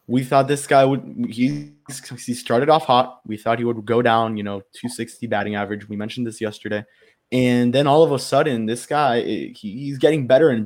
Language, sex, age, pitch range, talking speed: English, male, 20-39, 110-130 Hz, 220 wpm